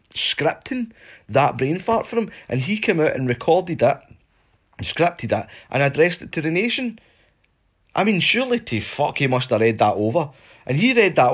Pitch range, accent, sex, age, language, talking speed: 100-150 Hz, British, male, 30-49, English, 190 wpm